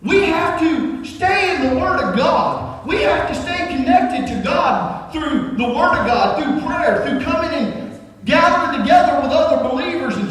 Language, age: English, 40-59